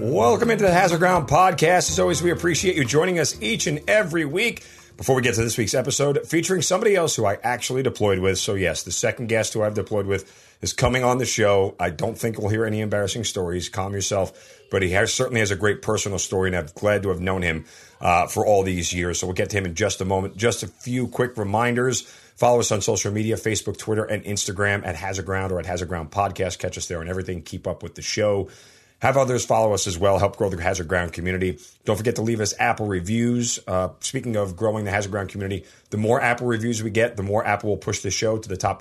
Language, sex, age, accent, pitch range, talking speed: English, male, 40-59, American, 95-115 Hz, 250 wpm